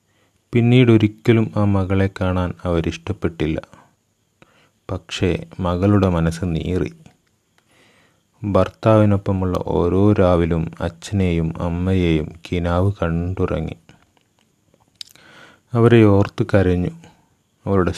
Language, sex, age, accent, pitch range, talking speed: Malayalam, male, 30-49, native, 85-105 Hz, 65 wpm